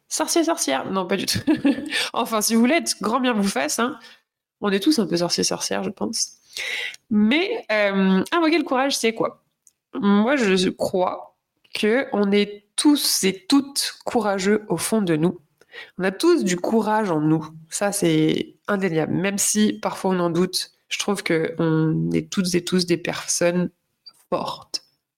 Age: 20-39